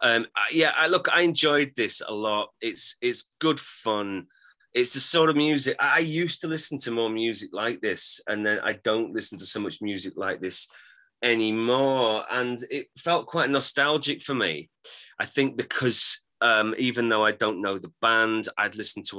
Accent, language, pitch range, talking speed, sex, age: British, English, 110-140 Hz, 190 wpm, male, 30-49